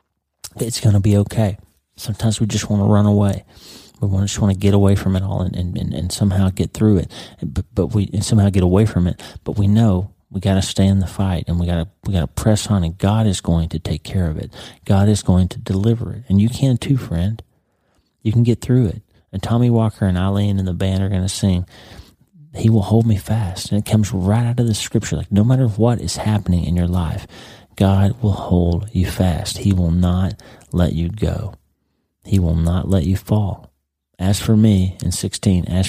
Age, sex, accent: 30-49, male, American